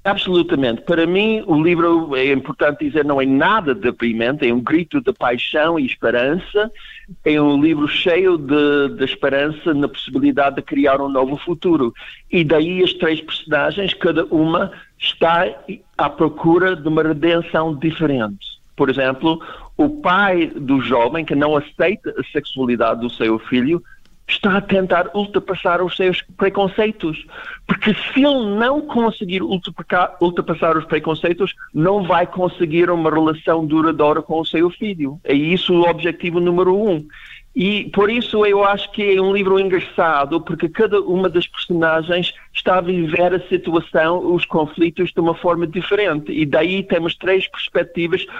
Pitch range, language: 150-185 Hz, Portuguese